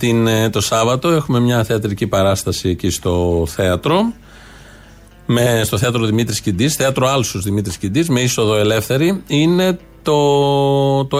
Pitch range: 110-135 Hz